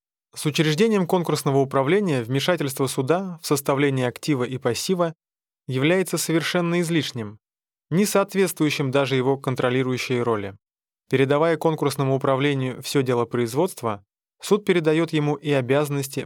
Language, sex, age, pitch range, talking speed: Russian, male, 20-39, 125-155 Hz, 115 wpm